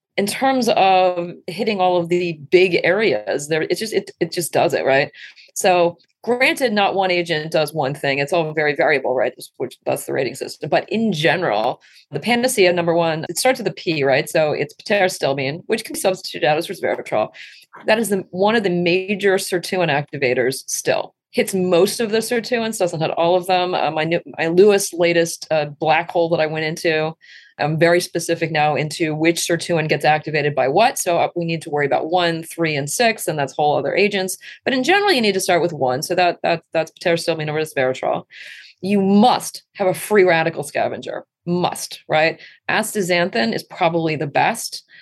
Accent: American